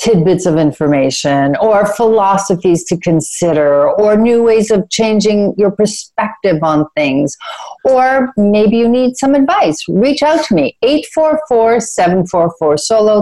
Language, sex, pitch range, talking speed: English, female, 165-250 Hz, 125 wpm